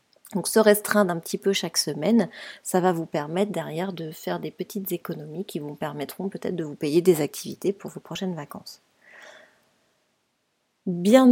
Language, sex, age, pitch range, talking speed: French, female, 30-49, 155-190 Hz, 170 wpm